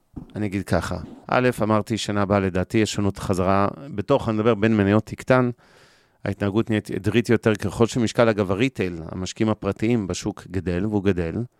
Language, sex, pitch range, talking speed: Hebrew, male, 90-110 Hz, 160 wpm